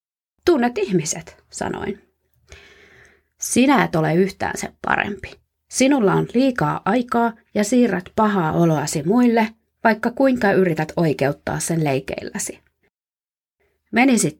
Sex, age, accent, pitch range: female, 30-49, native, 160-235 Hz